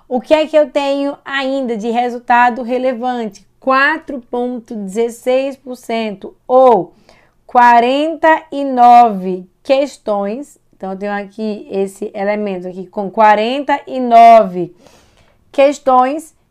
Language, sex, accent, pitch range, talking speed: Portuguese, female, Brazilian, 215-275 Hz, 85 wpm